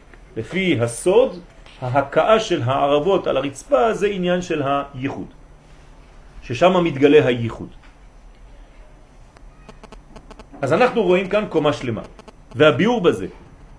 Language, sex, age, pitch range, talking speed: French, male, 40-59, 145-215 Hz, 95 wpm